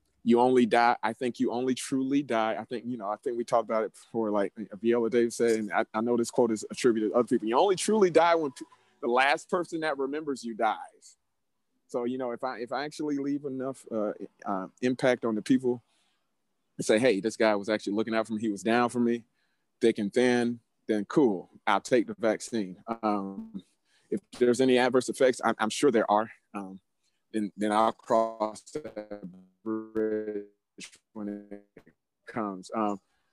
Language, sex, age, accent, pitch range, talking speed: English, male, 30-49, American, 105-125 Hz, 200 wpm